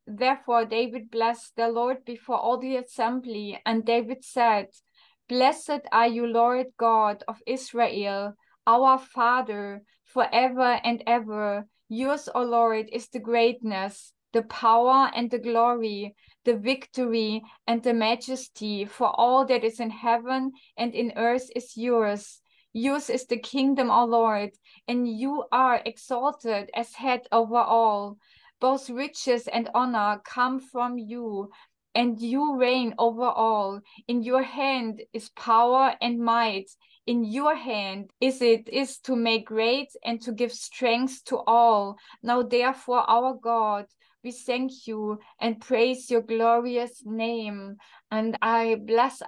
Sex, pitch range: female, 225-250 Hz